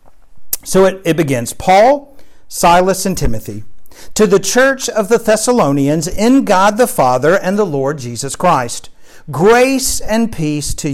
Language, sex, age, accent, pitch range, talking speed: English, male, 50-69, American, 145-215 Hz, 150 wpm